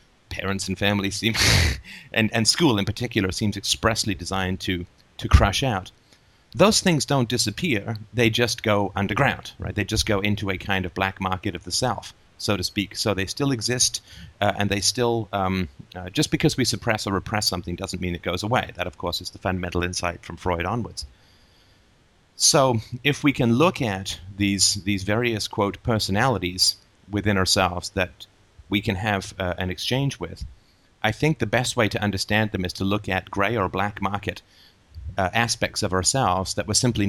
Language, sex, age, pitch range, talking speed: English, male, 30-49, 95-115 Hz, 190 wpm